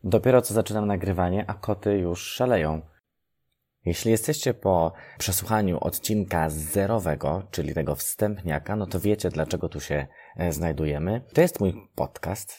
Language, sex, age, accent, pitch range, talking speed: Polish, male, 20-39, native, 80-110 Hz, 135 wpm